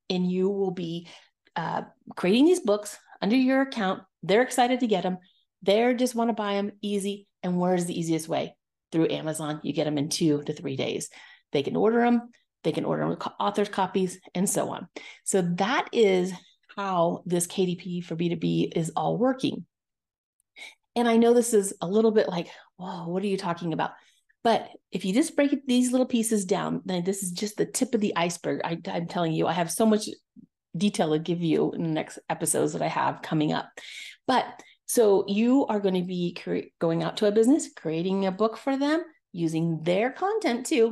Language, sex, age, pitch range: English, female, 30-49, 175-230 Hz